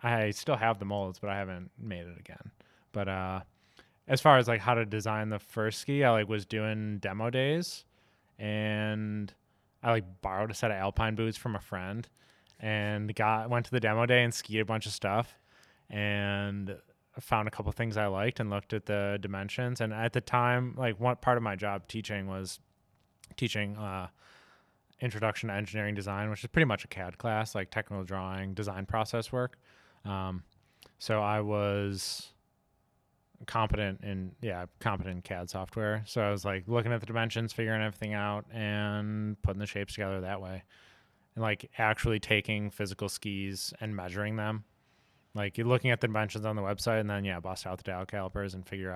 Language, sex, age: English, male, 20-39